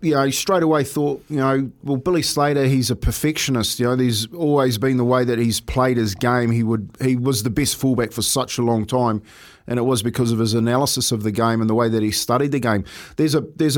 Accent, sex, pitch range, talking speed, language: Australian, male, 120-145 Hz, 255 wpm, English